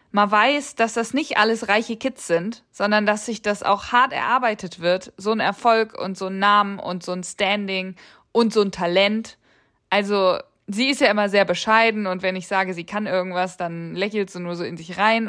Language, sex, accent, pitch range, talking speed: German, female, German, 190-240 Hz, 210 wpm